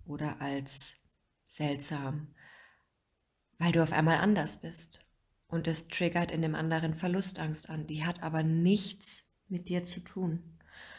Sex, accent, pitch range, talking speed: female, German, 160-185 Hz, 135 wpm